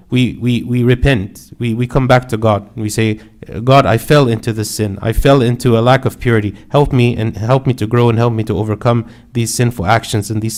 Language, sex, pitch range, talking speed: English, male, 115-140 Hz, 240 wpm